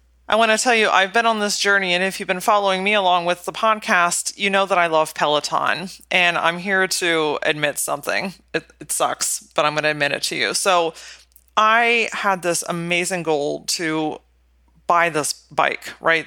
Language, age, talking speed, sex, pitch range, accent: English, 30-49, 200 wpm, female, 155-215 Hz, American